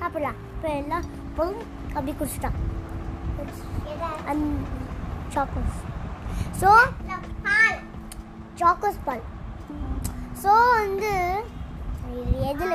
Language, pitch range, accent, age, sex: Tamil, 300-375 Hz, native, 20-39, male